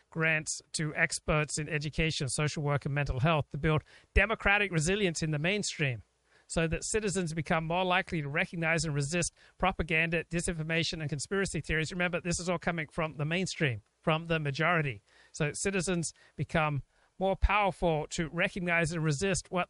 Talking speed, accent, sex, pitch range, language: 160 wpm, American, male, 155-180 Hz, English